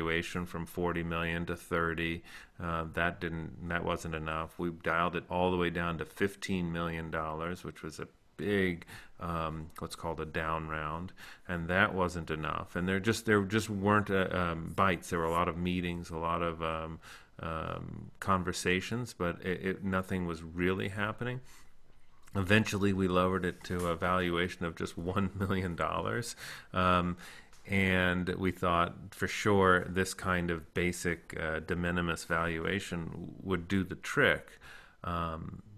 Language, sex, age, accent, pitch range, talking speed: English, male, 40-59, American, 85-95 Hz, 165 wpm